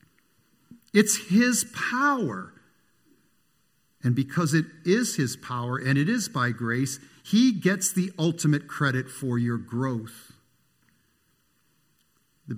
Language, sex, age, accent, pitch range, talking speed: English, male, 50-69, American, 120-195 Hz, 110 wpm